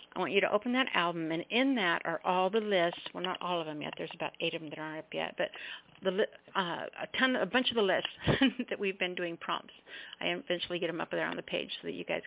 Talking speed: 270 wpm